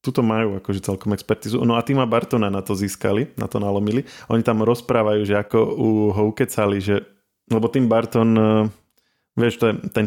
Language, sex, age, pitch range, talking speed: Slovak, male, 20-39, 105-115 Hz, 185 wpm